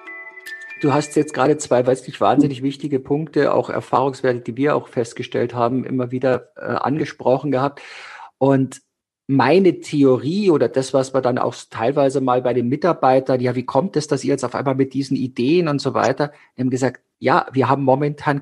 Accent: German